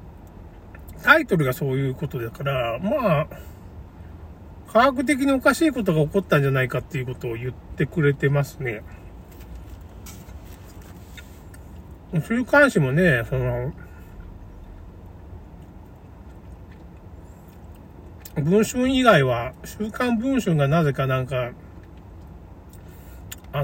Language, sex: Japanese, male